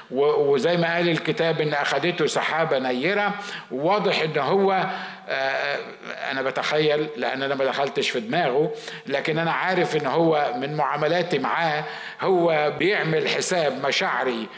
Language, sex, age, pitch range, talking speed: Arabic, male, 50-69, 150-200 Hz, 130 wpm